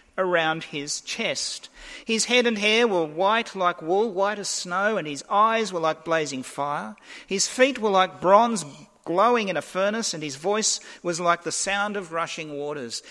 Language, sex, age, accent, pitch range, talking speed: English, male, 50-69, Australian, 165-220 Hz, 185 wpm